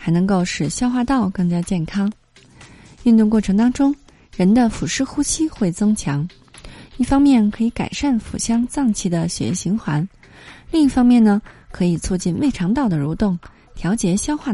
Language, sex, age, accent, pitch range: Chinese, female, 20-39, native, 180-245 Hz